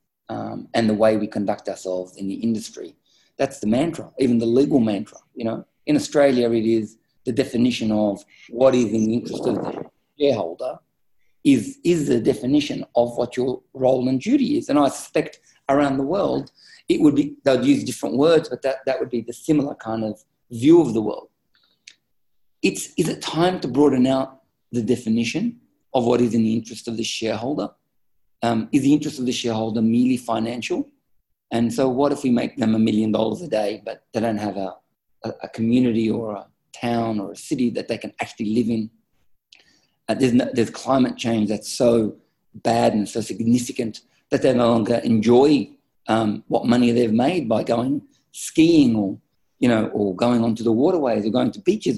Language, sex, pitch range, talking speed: English, male, 115-145 Hz, 190 wpm